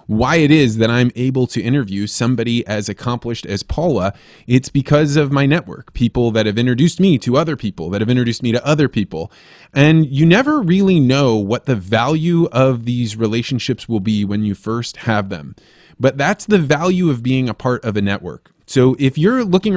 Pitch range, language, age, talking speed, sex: 115-155 Hz, English, 20-39, 200 wpm, male